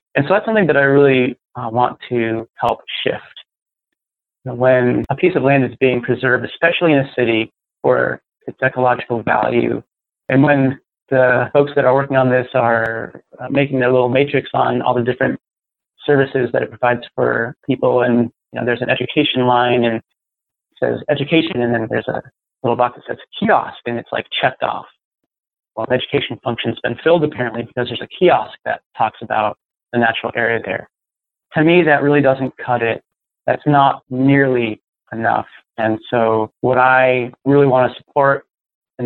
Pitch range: 115-135 Hz